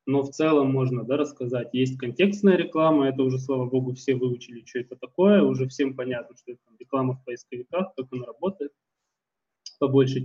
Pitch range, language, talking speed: 125-145 Hz, Russian, 170 wpm